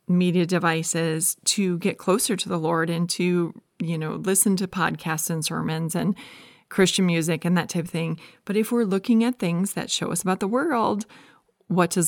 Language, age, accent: English, 30-49, American